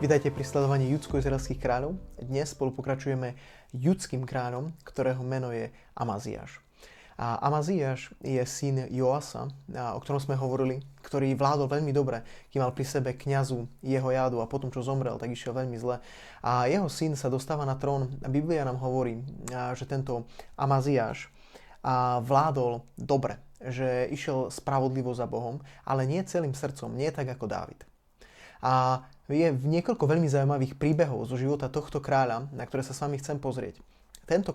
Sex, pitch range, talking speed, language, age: male, 125-140 Hz, 160 wpm, Slovak, 20-39